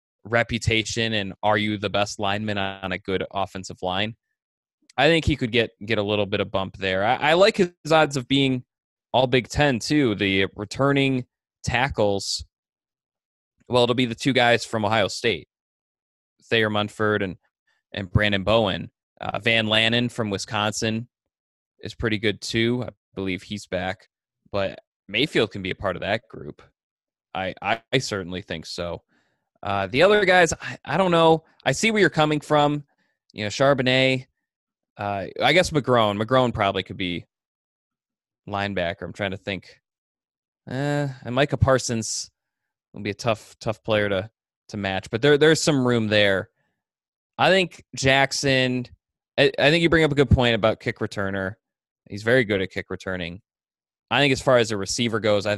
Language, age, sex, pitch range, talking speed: English, 20-39, male, 100-130 Hz, 175 wpm